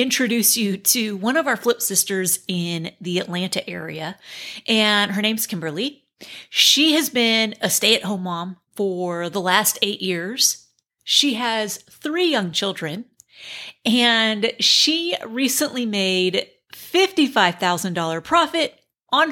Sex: female